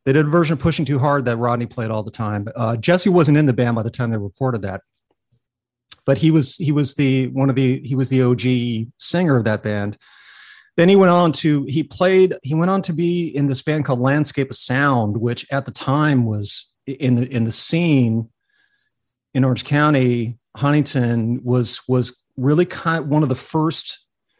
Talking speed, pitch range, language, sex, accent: 195 wpm, 120-145 Hz, English, male, American